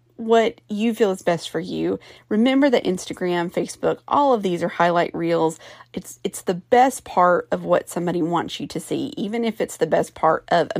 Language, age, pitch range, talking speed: English, 40-59, 145-185 Hz, 205 wpm